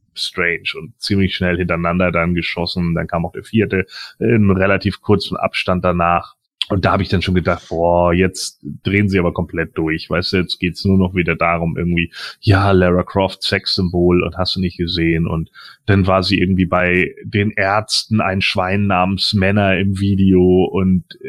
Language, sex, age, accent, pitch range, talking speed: German, male, 30-49, German, 90-100 Hz, 185 wpm